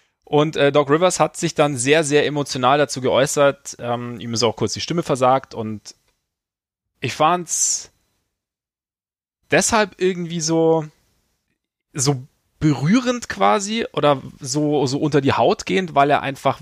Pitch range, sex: 125-150 Hz, male